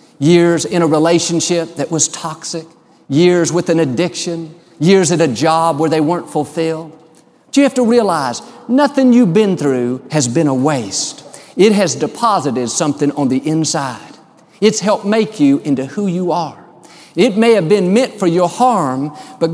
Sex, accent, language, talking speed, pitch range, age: male, American, English, 170 wpm, 150-215 Hz, 50-69